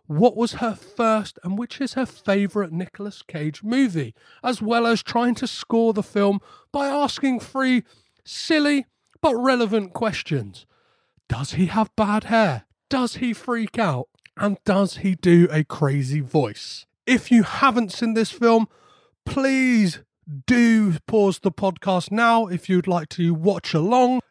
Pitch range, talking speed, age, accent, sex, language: 165-225 Hz, 150 wpm, 30-49, British, male, English